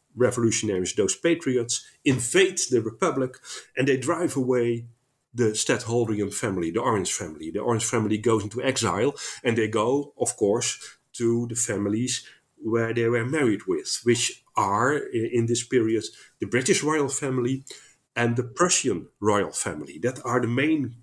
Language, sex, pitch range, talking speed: English, male, 115-145 Hz, 150 wpm